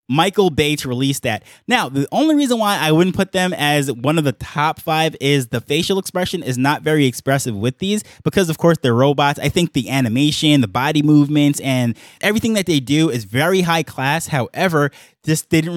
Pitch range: 135-165 Hz